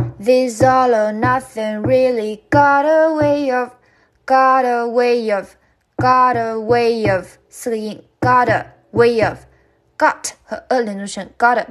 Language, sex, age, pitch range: Chinese, female, 20-39, 205-255 Hz